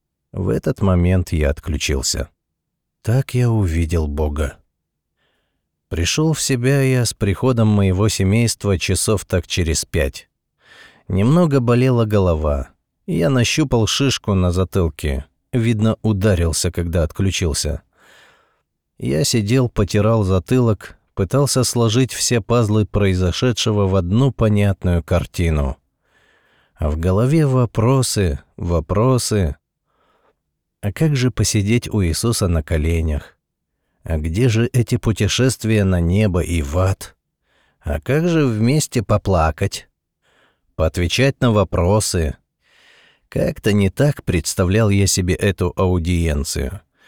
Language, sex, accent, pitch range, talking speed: Russian, male, native, 85-120 Hz, 110 wpm